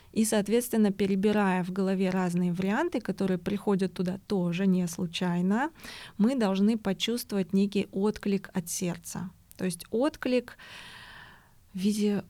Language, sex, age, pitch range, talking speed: Russian, female, 20-39, 185-220 Hz, 120 wpm